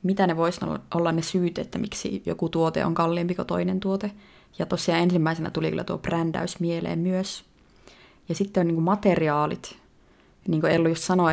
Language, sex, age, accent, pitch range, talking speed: Finnish, female, 30-49, native, 155-185 Hz, 170 wpm